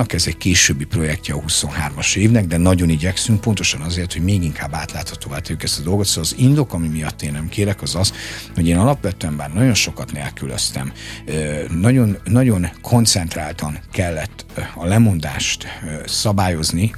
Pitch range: 80-110 Hz